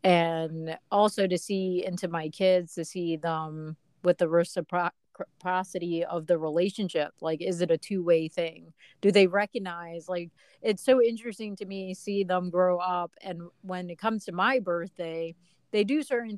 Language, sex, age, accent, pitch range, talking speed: English, female, 30-49, American, 170-200 Hz, 165 wpm